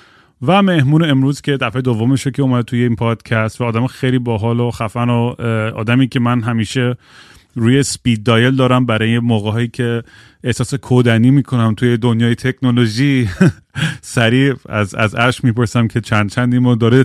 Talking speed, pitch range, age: 155 wpm, 110-125 Hz, 30-49